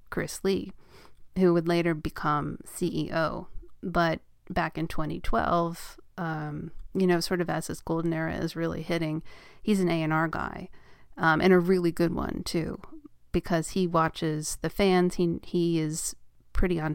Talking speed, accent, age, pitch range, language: 155 wpm, American, 40-59, 160-195 Hz, English